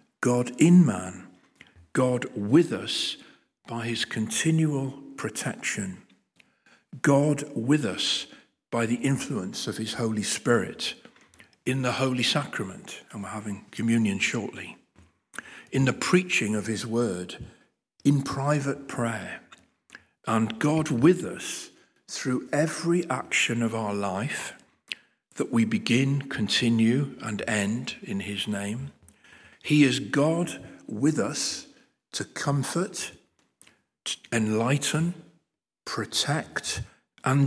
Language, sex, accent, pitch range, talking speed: English, male, British, 115-150 Hz, 105 wpm